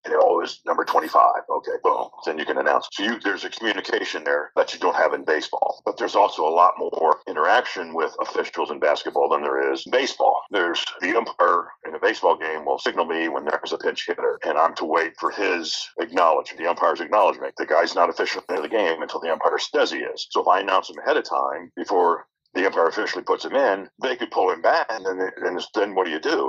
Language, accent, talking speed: English, American, 240 wpm